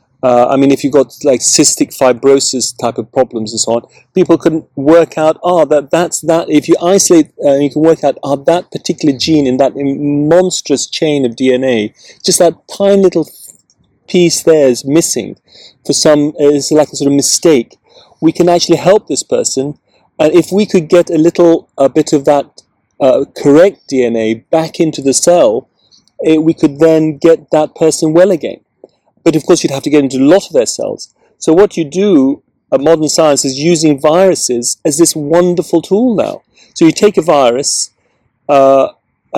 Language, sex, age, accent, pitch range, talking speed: English, male, 30-49, British, 135-170 Hz, 190 wpm